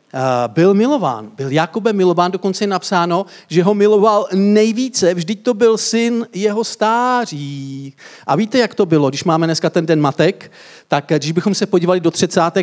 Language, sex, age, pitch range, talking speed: Czech, male, 50-69, 150-190 Hz, 170 wpm